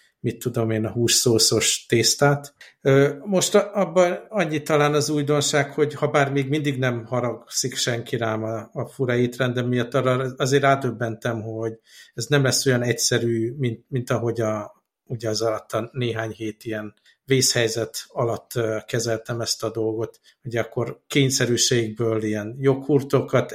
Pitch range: 115-130 Hz